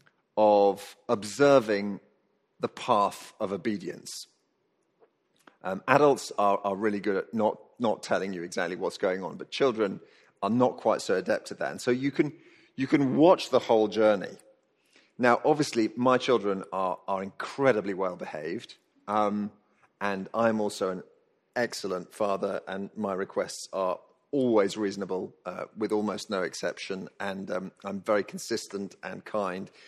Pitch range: 105-150 Hz